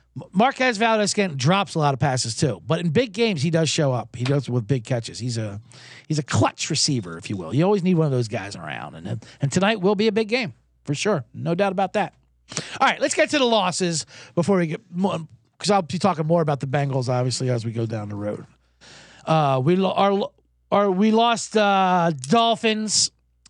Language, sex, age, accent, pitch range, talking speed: English, male, 50-69, American, 120-190 Hz, 220 wpm